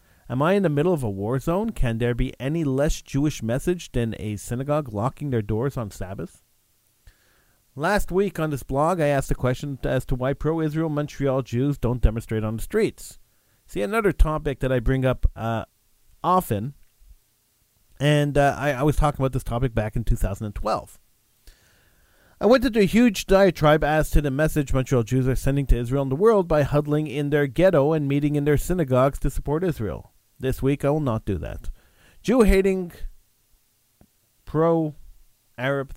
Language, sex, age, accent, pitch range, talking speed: English, male, 40-59, American, 115-155 Hz, 175 wpm